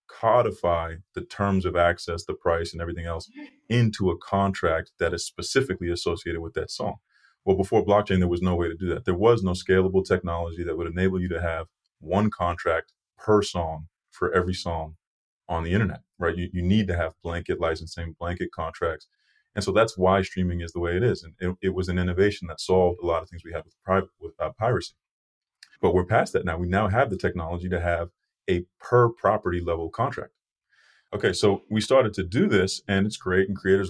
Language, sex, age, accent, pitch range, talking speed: English, male, 30-49, American, 85-105 Hz, 205 wpm